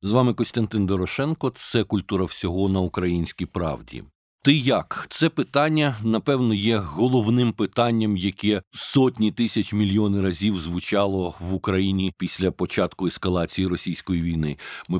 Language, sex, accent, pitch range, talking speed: Ukrainian, male, native, 95-125 Hz, 130 wpm